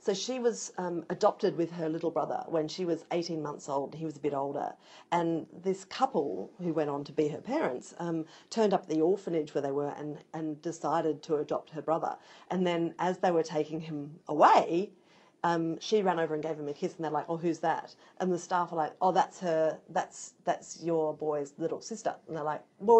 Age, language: 40-59, English